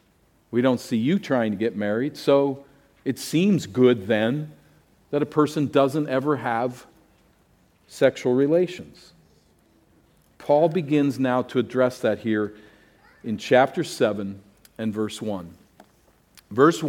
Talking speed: 125 wpm